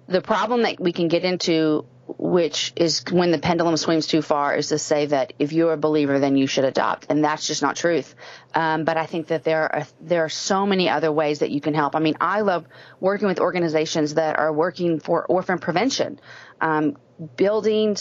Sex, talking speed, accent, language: female, 215 wpm, American, English